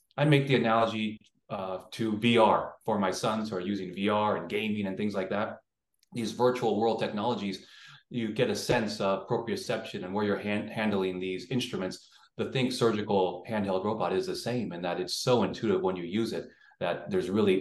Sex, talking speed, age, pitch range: male, 195 wpm, 30-49, 100-125 Hz